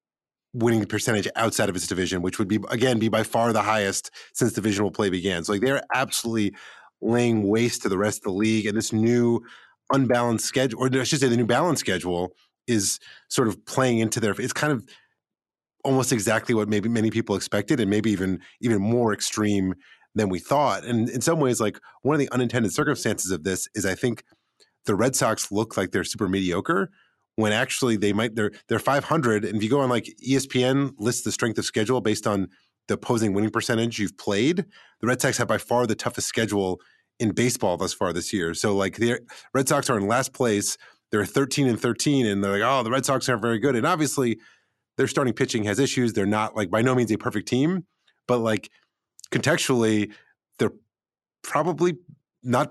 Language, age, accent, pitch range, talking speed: English, 30-49, American, 105-125 Hz, 205 wpm